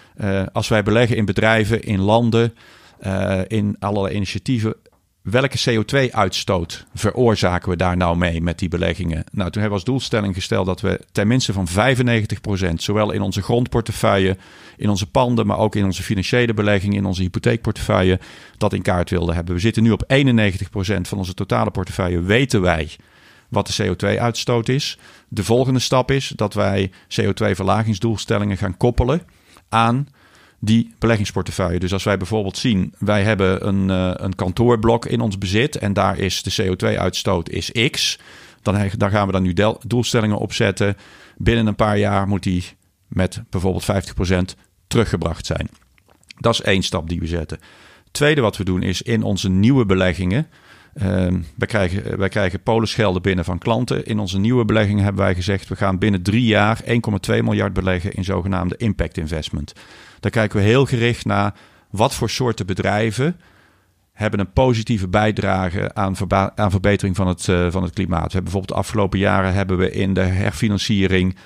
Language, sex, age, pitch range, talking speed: Dutch, male, 40-59, 95-115 Hz, 165 wpm